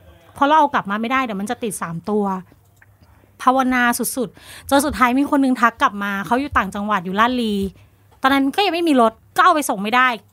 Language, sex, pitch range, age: Thai, female, 215-275 Hz, 30-49